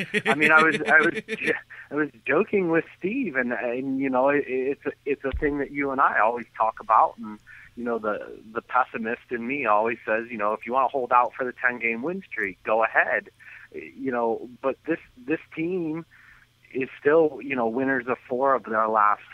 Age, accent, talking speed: 30-49, American, 215 wpm